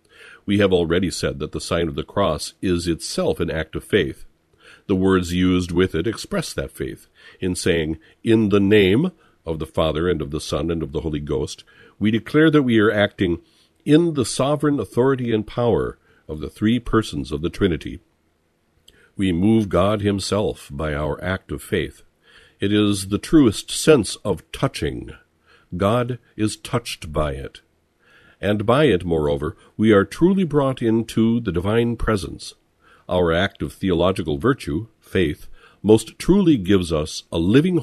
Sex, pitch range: male, 80-115 Hz